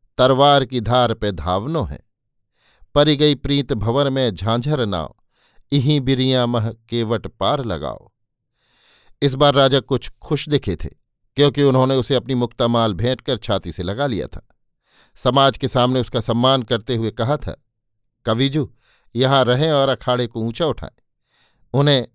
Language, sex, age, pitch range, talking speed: Hindi, male, 50-69, 115-140 Hz, 150 wpm